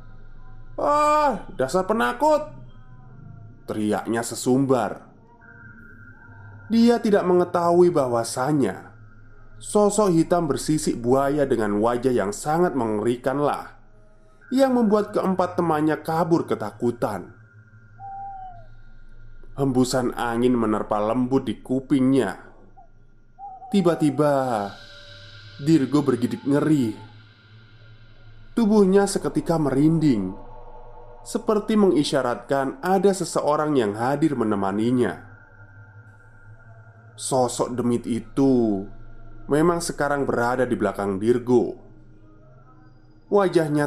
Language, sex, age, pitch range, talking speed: Indonesian, male, 20-39, 110-150 Hz, 75 wpm